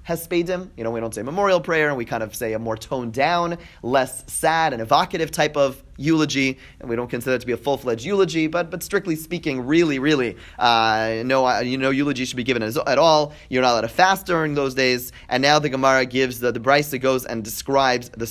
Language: English